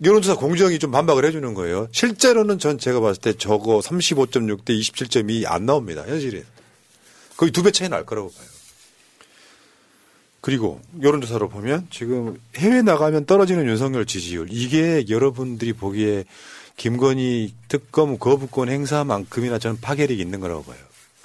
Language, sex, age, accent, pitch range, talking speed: English, male, 40-59, Korean, 115-170 Hz, 125 wpm